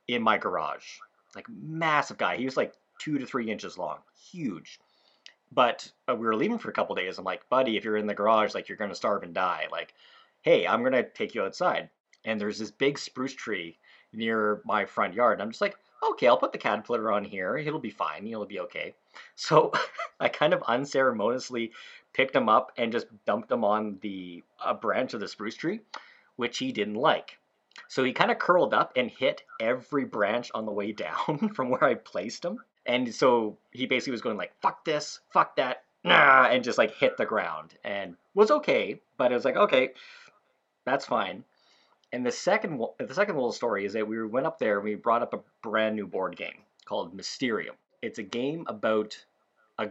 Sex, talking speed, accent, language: male, 210 wpm, American, English